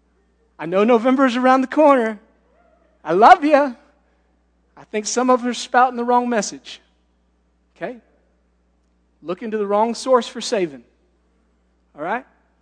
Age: 40-59